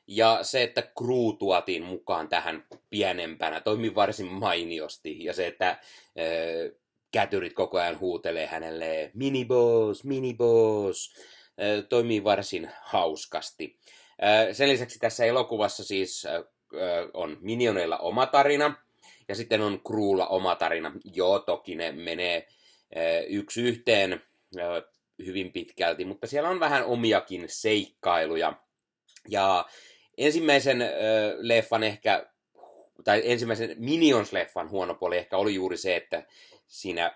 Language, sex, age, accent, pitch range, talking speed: Finnish, male, 30-49, native, 95-120 Hz, 120 wpm